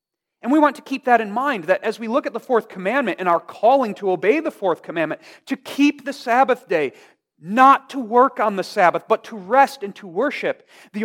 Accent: American